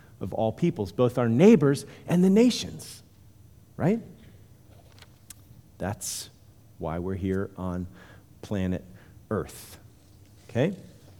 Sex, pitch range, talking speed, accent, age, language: male, 100-135 Hz, 95 wpm, American, 40-59, English